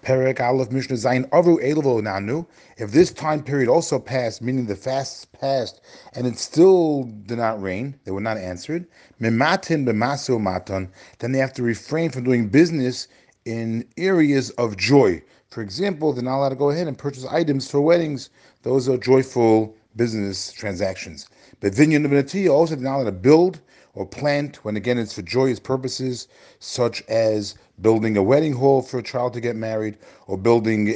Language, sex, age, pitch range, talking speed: English, male, 40-59, 110-140 Hz, 150 wpm